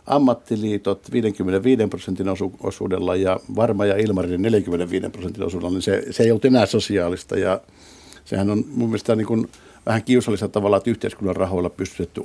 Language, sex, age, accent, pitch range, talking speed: Finnish, male, 60-79, native, 95-110 Hz, 160 wpm